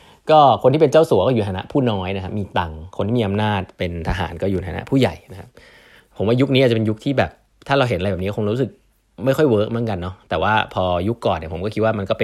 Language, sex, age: Thai, male, 20-39